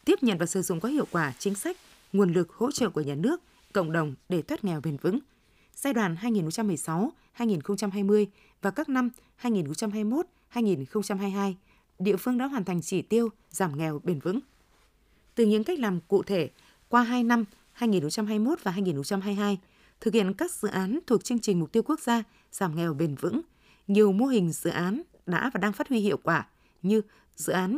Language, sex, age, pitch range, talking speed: Vietnamese, female, 20-39, 180-230 Hz, 185 wpm